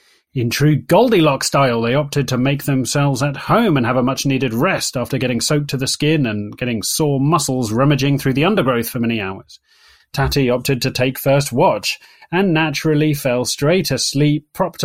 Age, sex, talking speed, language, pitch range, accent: 30-49, male, 180 wpm, English, 130-160 Hz, British